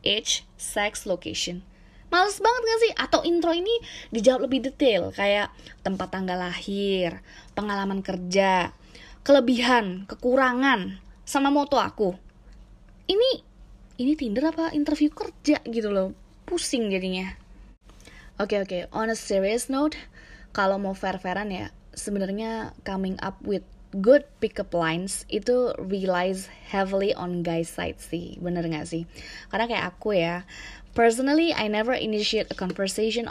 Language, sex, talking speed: Indonesian, female, 135 wpm